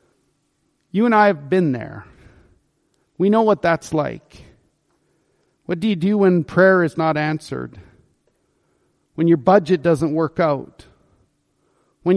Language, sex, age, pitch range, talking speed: English, male, 40-59, 160-195 Hz, 135 wpm